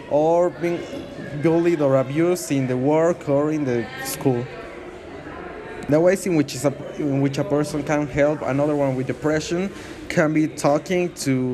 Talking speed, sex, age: 145 wpm, male, 20-39